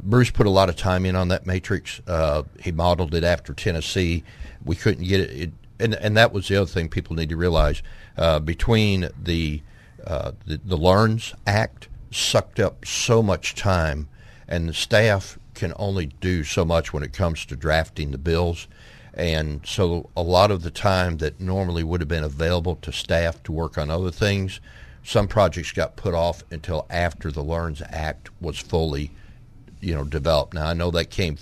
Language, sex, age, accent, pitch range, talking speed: English, male, 60-79, American, 80-95 Hz, 190 wpm